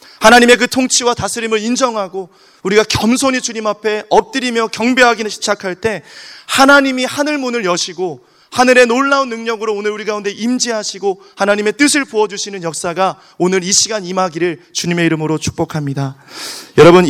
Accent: native